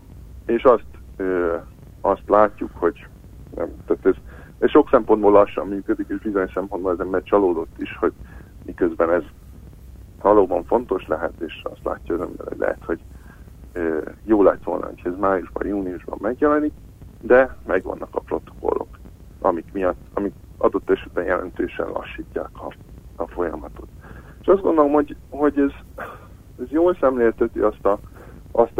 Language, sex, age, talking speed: Hungarian, male, 50-69, 140 wpm